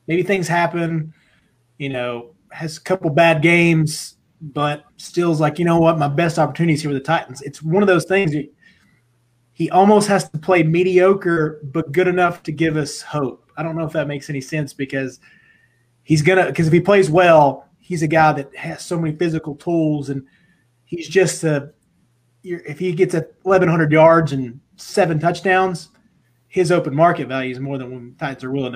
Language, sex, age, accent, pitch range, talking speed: English, male, 30-49, American, 145-175 Hz, 195 wpm